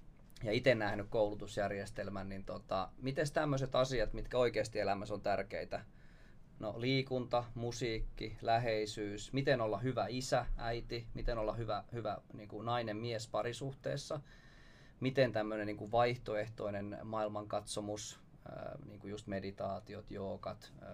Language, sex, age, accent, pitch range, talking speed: Finnish, male, 20-39, native, 105-125 Hz, 115 wpm